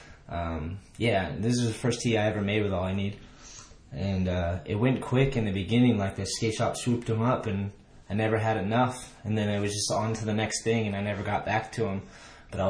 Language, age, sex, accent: English, 20-39, male, American